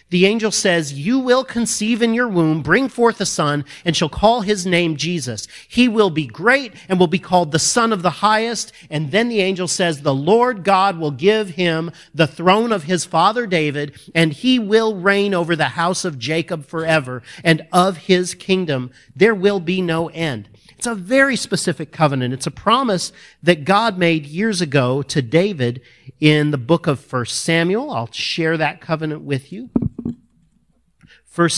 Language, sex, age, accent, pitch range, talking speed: English, male, 40-59, American, 145-195 Hz, 180 wpm